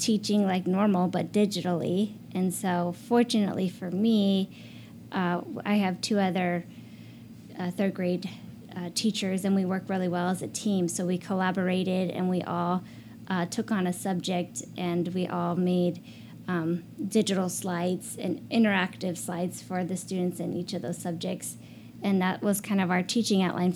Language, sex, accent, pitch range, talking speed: English, female, American, 180-200 Hz, 165 wpm